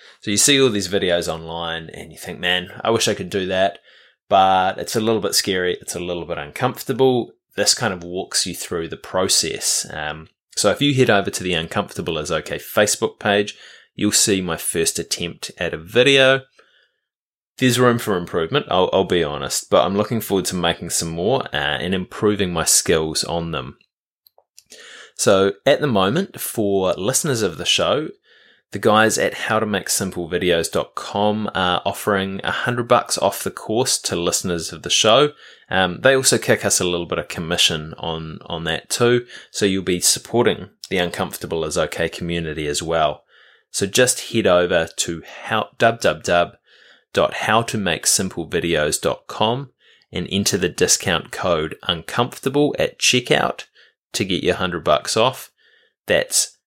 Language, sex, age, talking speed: English, male, 20-39, 165 wpm